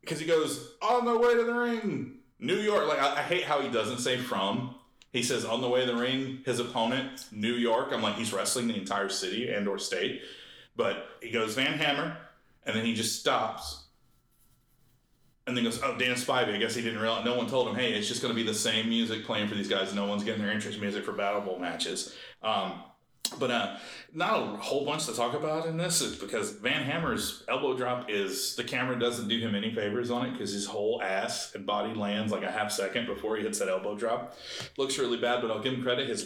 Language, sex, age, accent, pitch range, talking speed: English, male, 30-49, American, 115-145 Hz, 240 wpm